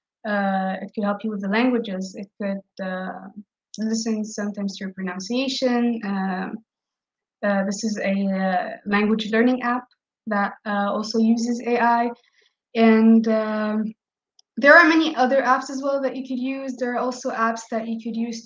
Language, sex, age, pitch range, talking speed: English, female, 20-39, 205-250 Hz, 165 wpm